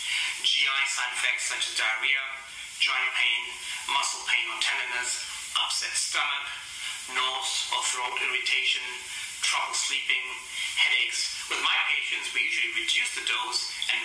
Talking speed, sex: 130 wpm, male